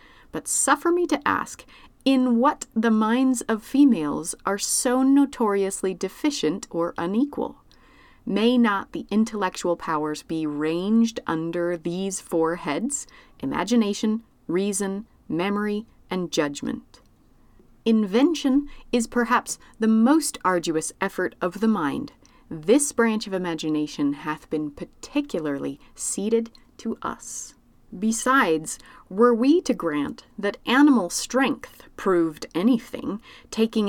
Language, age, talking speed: English, 30-49, 115 wpm